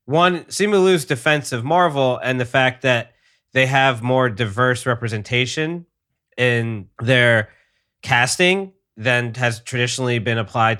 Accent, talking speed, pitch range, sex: American, 120 wpm, 110-130 Hz, male